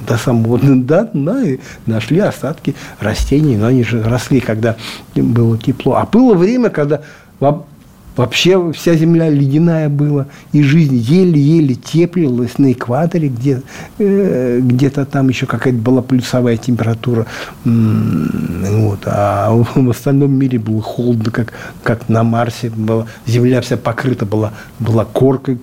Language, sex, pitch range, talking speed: Russian, male, 120-160 Hz, 120 wpm